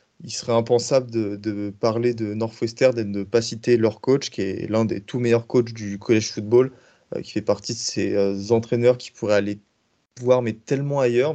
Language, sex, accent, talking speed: French, male, French, 210 wpm